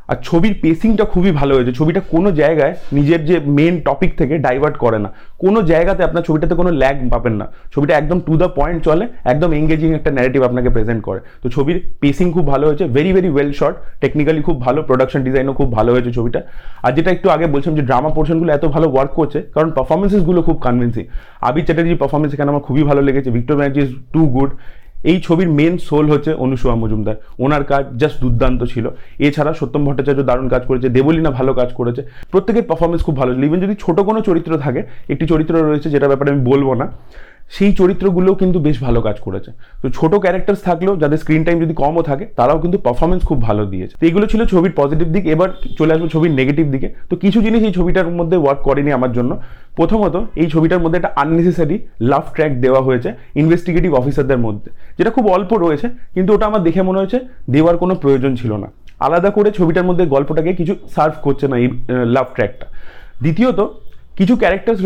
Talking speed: 195 wpm